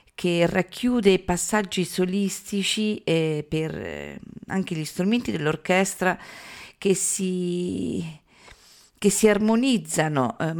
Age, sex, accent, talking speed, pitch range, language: 40-59, female, native, 85 wpm, 155-195 Hz, Italian